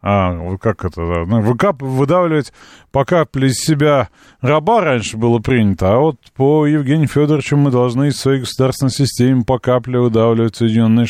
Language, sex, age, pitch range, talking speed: Russian, male, 30-49, 105-150 Hz, 155 wpm